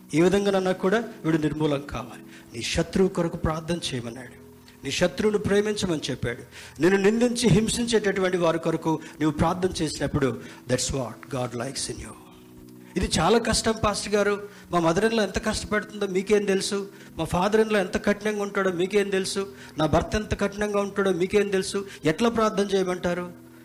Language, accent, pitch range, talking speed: Telugu, native, 125-200 Hz, 150 wpm